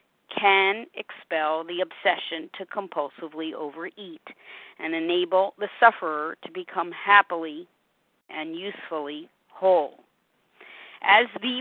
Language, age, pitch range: English, 50-69, 185-245 Hz